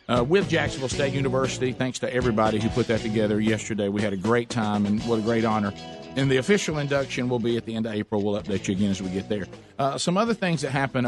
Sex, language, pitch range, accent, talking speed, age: male, English, 100-120 Hz, American, 260 wpm, 50-69